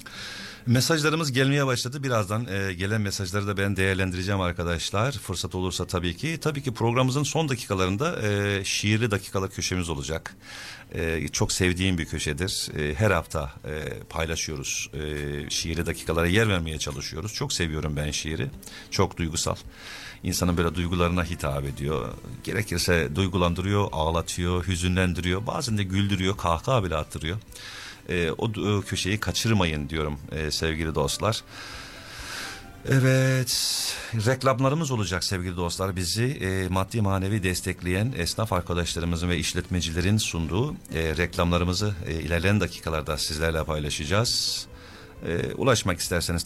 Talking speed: 115 wpm